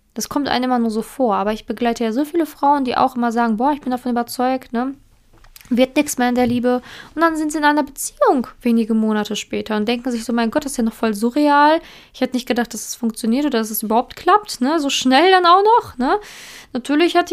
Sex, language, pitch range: female, German, 225-275 Hz